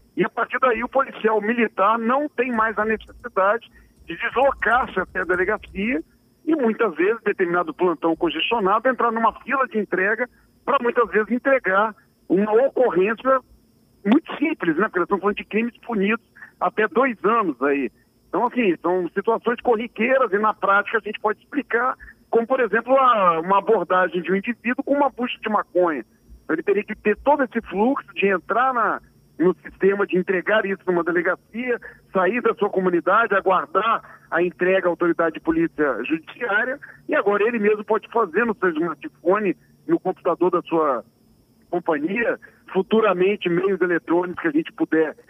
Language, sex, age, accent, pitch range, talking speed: Portuguese, male, 50-69, Brazilian, 185-250 Hz, 165 wpm